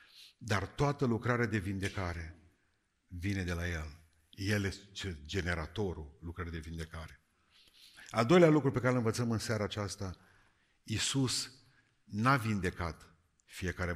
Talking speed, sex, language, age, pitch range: 125 wpm, male, Romanian, 50-69, 90-120 Hz